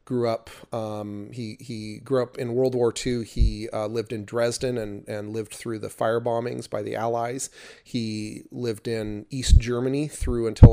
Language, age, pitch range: English, 30-49, 110-125 Hz